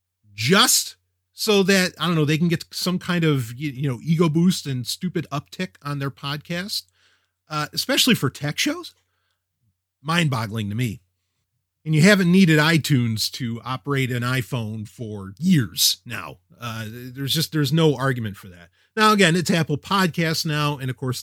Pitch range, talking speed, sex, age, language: 120-175 Hz, 170 wpm, male, 30-49, English